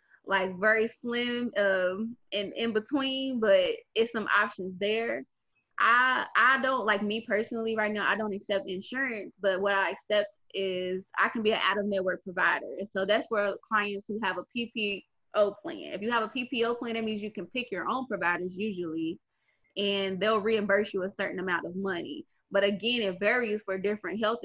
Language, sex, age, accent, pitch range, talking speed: English, female, 20-39, American, 190-225 Hz, 185 wpm